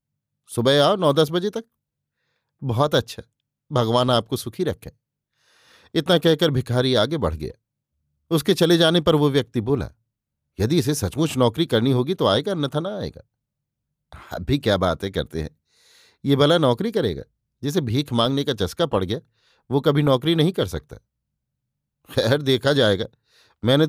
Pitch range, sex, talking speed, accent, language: 115-155 Hz, male, 160 wpm, native, Hindi